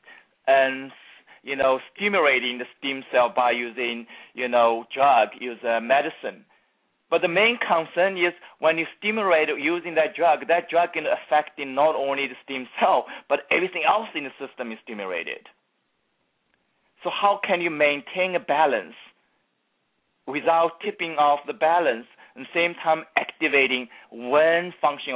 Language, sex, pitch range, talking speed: English, male, 130-165 Hz, 150 wpm